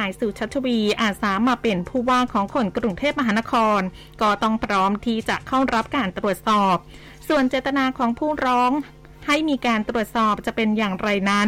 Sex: female